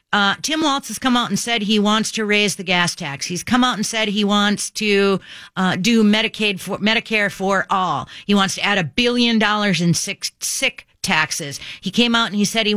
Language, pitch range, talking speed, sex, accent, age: English, 180-215 Hz, 230 wpm, female, American, 40-59